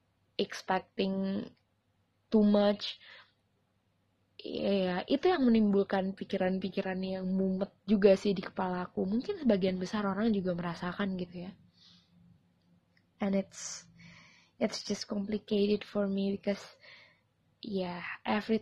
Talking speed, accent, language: 105 wpm, native, Indonesian